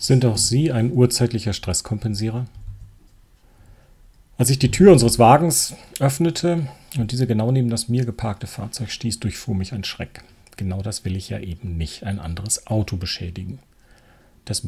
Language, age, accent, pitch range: German, 40-59, German, 95-120 Hz